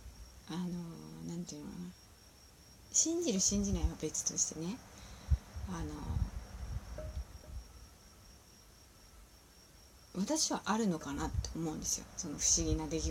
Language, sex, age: Japanese, female, 30-49